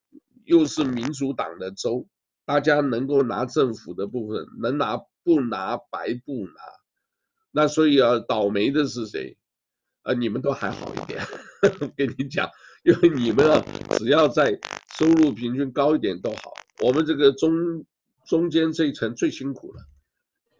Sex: male